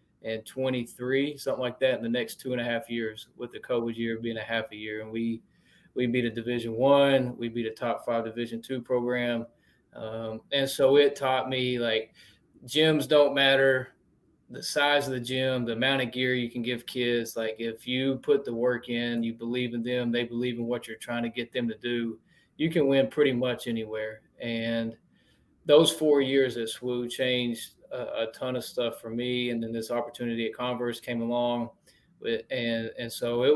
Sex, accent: male, American